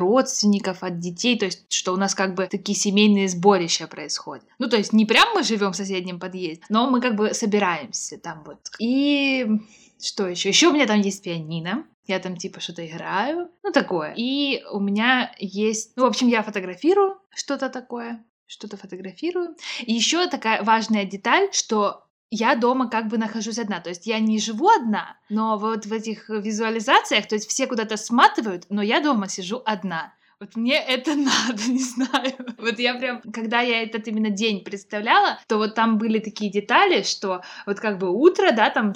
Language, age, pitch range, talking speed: Russian, 20-39, 200-255 Hz, 185 wpm